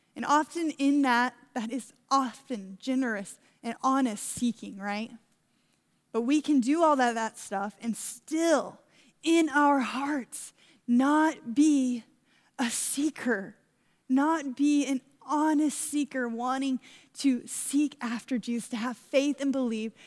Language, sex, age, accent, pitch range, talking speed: English, female, 10-29, American, 225-270 Hz, 130 wpm